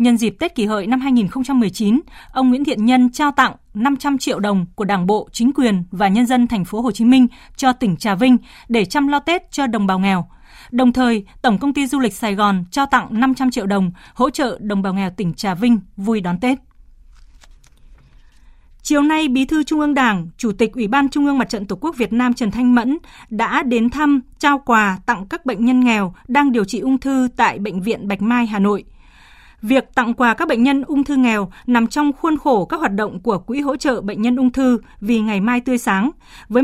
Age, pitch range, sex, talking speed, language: 20-39, 210-265 Hz, female, 230 wpm, Vietnamese